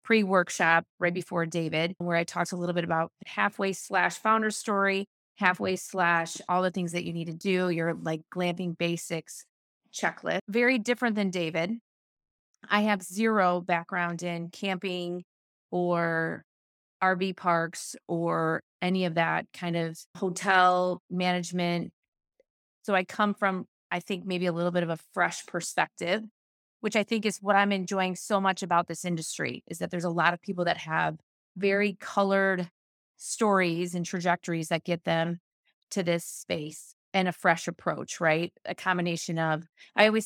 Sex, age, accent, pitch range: female, 30-49, American, 170-200 Hz